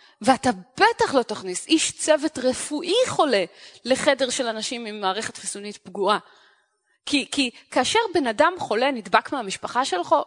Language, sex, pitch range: Hebrew, female, 215-320 Hz